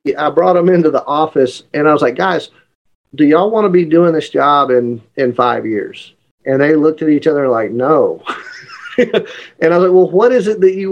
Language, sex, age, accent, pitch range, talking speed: English, male, 40-59, American, 130-160 Hz, 225 wpm